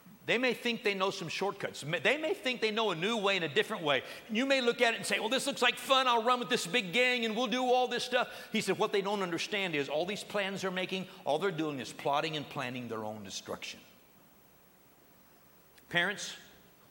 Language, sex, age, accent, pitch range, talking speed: English, male, 50-69, American, 145-225 Hz, 235 wpm